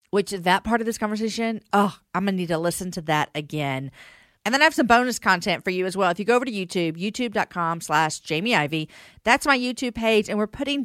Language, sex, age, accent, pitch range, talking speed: English, female, 40-59, American, 160-220 Hz, 245 wpm